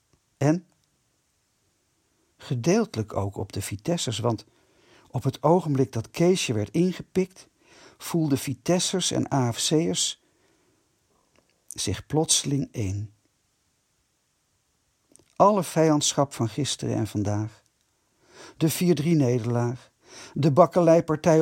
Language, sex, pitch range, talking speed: Dutch, male, 105-155 Hz, 85 wpm